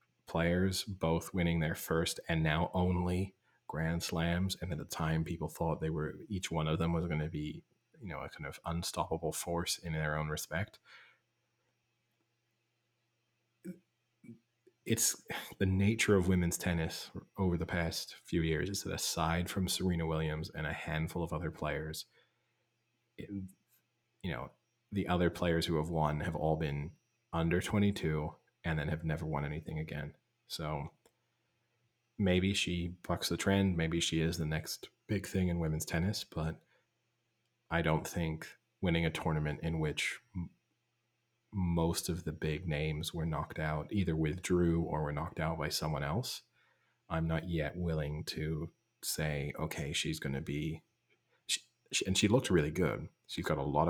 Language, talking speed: English, 160 wpm